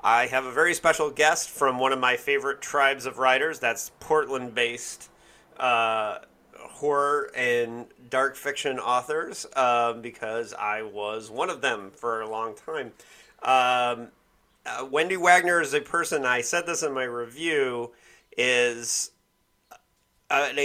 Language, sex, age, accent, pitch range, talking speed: English, male, 30-49, American, 115-150 Hz, 135 wpm